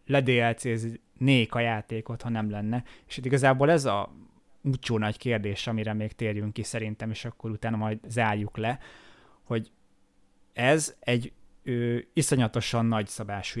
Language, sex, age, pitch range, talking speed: Hungarian, male, 20-39, 105-120 Hz, 130 wpm